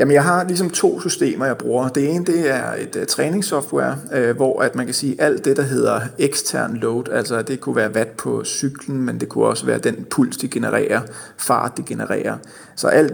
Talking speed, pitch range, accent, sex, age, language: 225 wpm, 110-140 Hz, native, male, 30-49, Danish